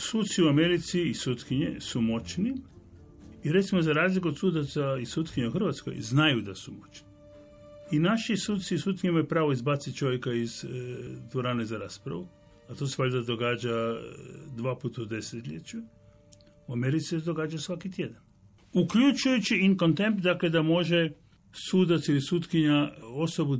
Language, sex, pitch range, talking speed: Croatian, male, 115-165 Hz, 150 wpm